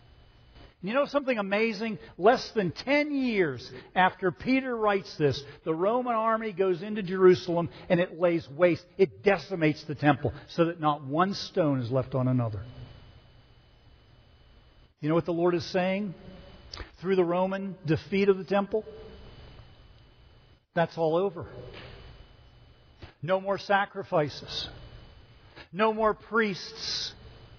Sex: male